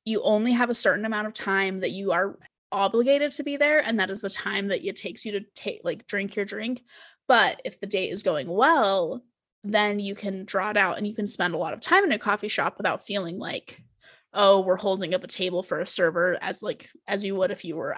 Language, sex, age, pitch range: English, female, 20-39, 195-240 Hz